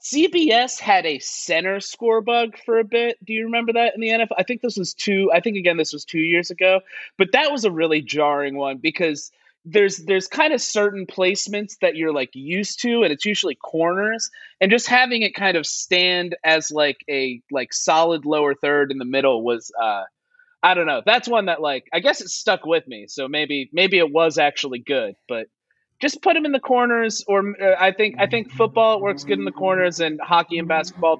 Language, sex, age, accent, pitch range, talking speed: English, male, 30-49, American, 155-225 Hz, 225 wpm